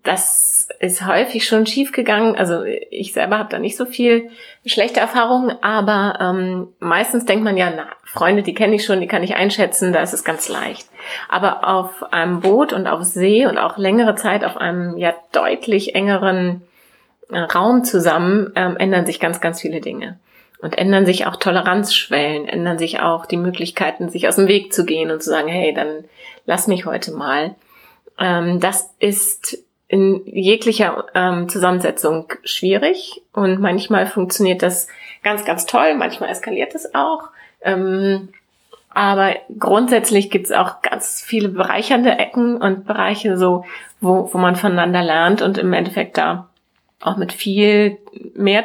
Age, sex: 30-49, female